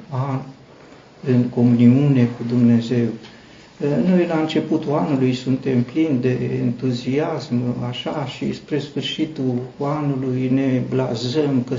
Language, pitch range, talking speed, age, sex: Romanian, 125-145 Hz, 100 wpm, 60-79, male